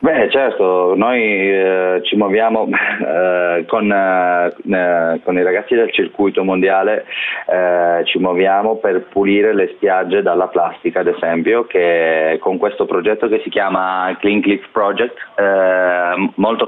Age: 30-49